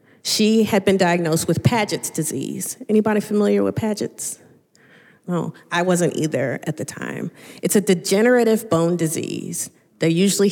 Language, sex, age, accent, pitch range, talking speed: English, female, 30-49, American, 155-195 Hz, 145 wpm